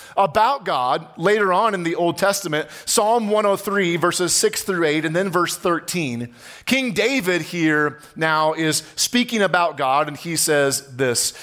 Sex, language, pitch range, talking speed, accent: male, English, 140-205 Hz, 160 wpm, American